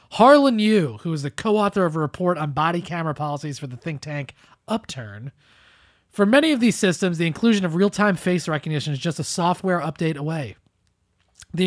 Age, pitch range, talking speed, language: 30-49, 150-200 Hz, 185 wpm, English